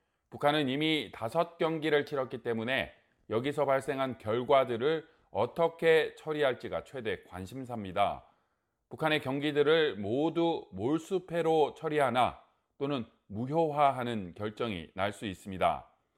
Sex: male